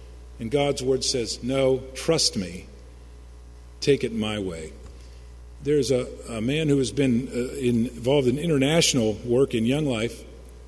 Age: 50-69